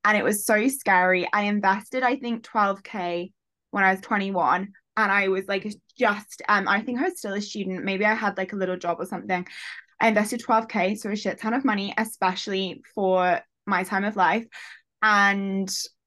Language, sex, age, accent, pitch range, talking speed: English, female, 20-39, British, 195-235 Hz, 195 wpm